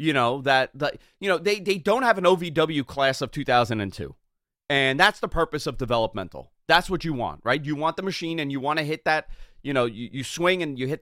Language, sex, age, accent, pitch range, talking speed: English, male, 30-49, American, 125-170 Hz, 235 wpm